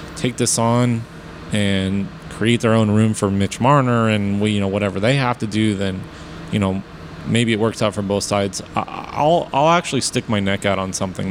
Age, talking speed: 30-49, 205 wpm